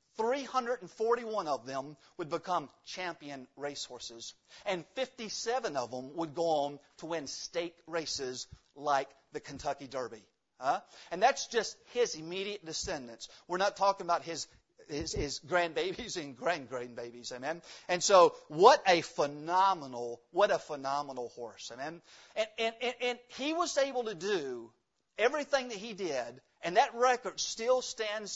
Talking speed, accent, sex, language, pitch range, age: 145 wpm, American, male, English, 145-235 Hz, 50-69